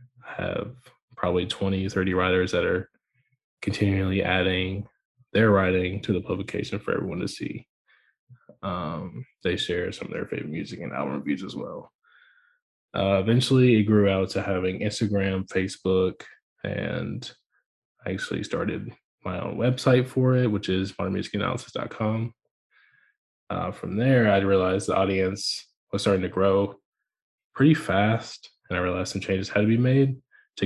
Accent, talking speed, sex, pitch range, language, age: American, 145 wpm, male, 95-120 Hz, English, 20-39